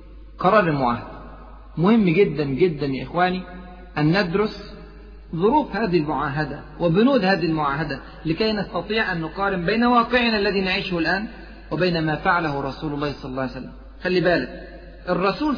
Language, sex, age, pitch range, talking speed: Arabic, male, 40-59, 160-220 Hz, 140 wpm